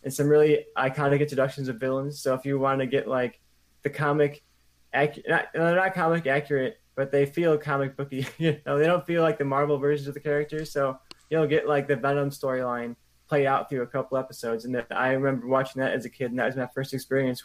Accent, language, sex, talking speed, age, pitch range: American, English, male, 225 wpm, 20-39, 120-140 Hz